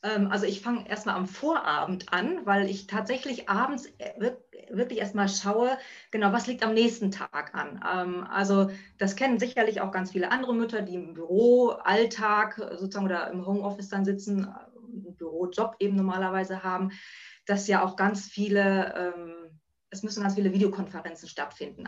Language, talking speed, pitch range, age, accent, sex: German, 150 wpm, 190-230 Hz, 20-39, German, female